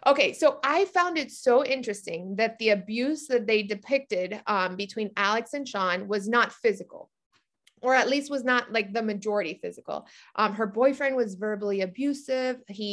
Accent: American